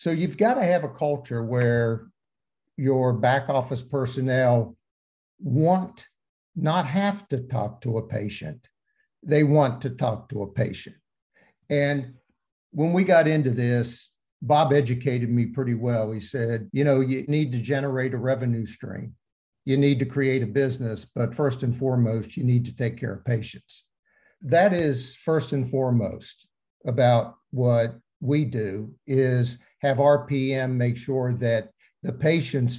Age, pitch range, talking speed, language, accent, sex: 50-69, 120-145 Hz, 150 wpm, English, American, male